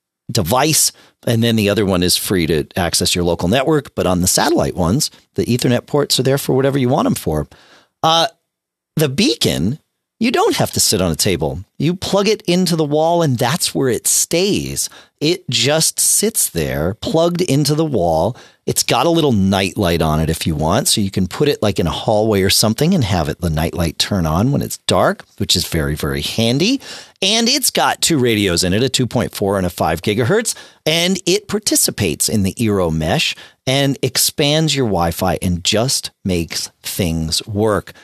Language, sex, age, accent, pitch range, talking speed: English, male, 40-59, American, 85-135 Hz, 195 wpm